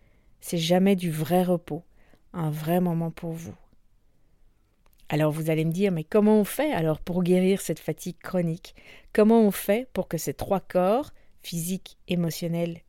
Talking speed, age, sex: 165 wpm, 50-69, female